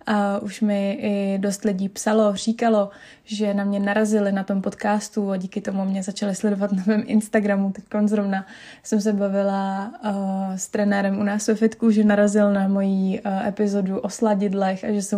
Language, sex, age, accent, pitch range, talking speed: Czech, female, 20-39, native, 195-210 Hz, 190 wpm